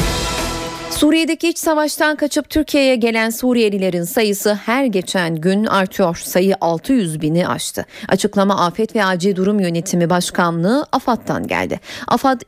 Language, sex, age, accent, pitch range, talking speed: Turkish, female, 30-49, native, 190-260 Hz, 125 wpm